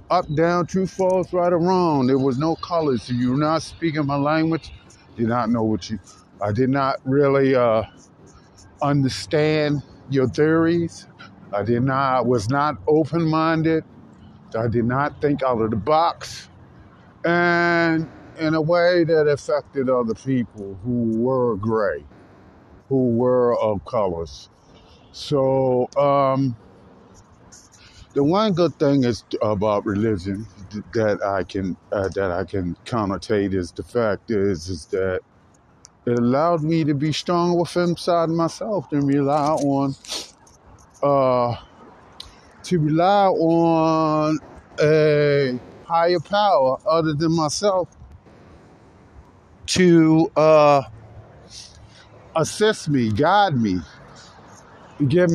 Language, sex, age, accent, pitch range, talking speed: English, male, 50-69, American, 115-160 Hz, 120 wpm